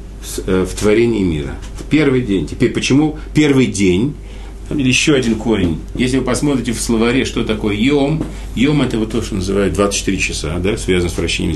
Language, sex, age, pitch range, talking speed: Russian, male, 40-59, 100-150 Hz, 175 wpm